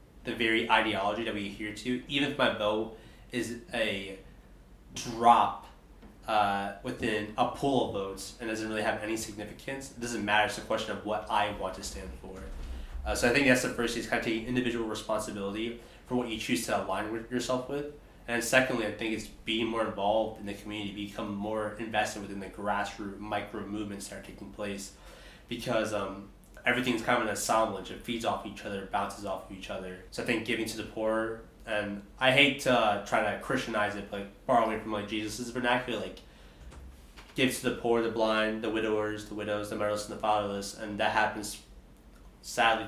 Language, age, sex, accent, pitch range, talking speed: English, 20-39, male, American, 100-115 Hz, 200 wpm